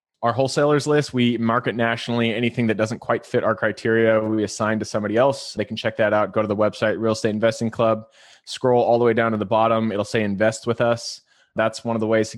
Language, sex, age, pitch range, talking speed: English, male, 20-39, 110-120 Hz, 240 wpm